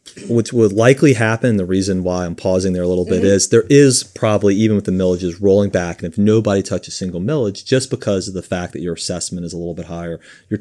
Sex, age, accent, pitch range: male, 30-49, American, 85-110 Hz